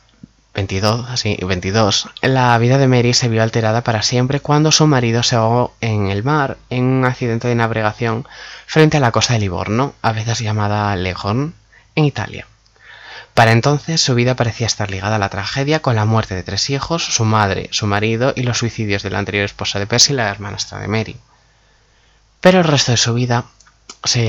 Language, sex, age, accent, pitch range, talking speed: Spanish, male, 20-39, Spanish, 105-130 Hz, 190 wpm